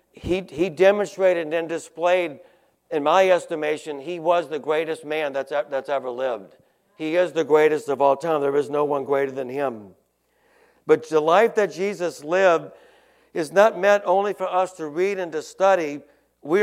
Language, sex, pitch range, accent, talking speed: English, male, 155-185 Hz, American, 175 wpm